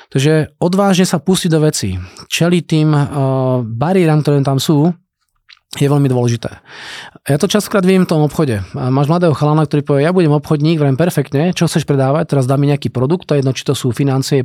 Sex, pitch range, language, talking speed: male, 135-170 Hz, Czech, 210 wpm